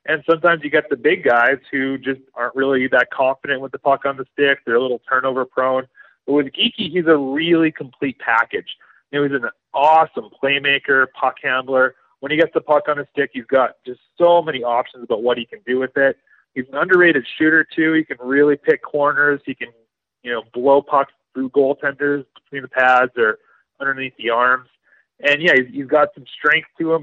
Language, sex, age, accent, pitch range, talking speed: English, male, 30-49, American, 130-160 Hz, 205 wpm